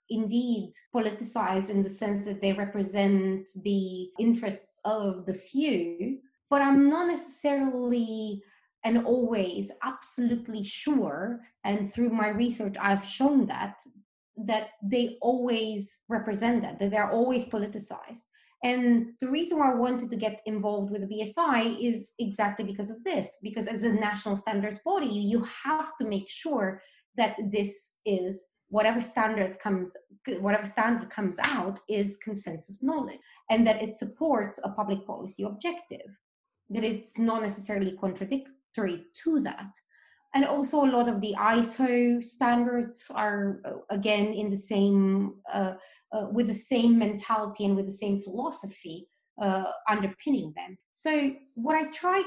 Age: 20-39